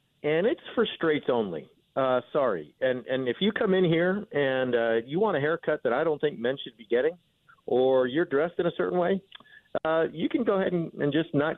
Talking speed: 230 wpm